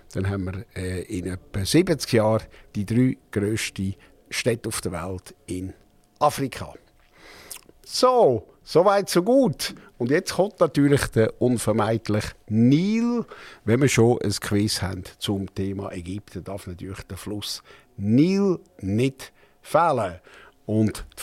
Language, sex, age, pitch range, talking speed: German, male, 60-79, 100-135 Hz, 135 wpm